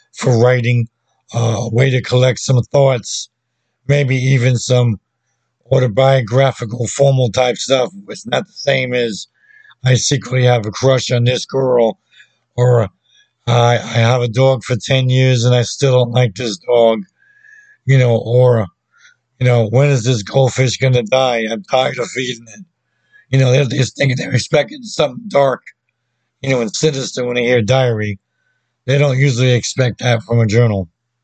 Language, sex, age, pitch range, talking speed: English, male, 50-69, 120-135 Hz, 170 wpm